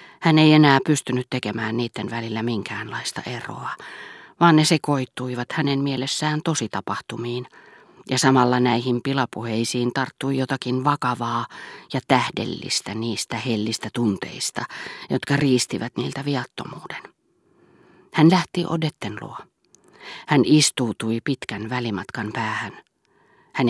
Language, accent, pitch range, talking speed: Finnish, native, 120-155 Hz, 105 wpm